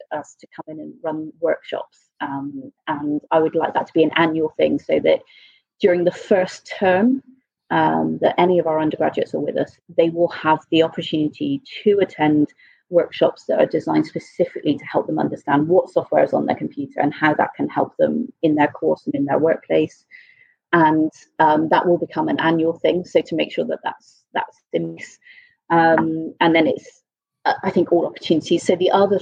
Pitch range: 160-235 Hz